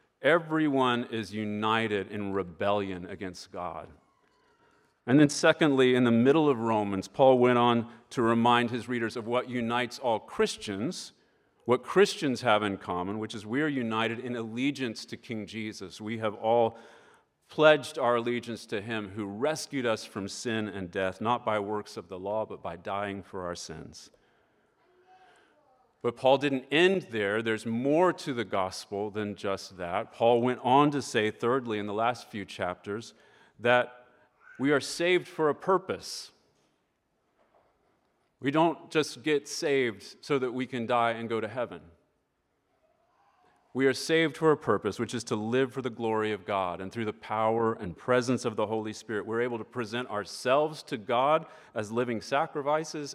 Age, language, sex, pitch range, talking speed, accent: 40-59, English, male, 105-140 Hz, 170 wpm, American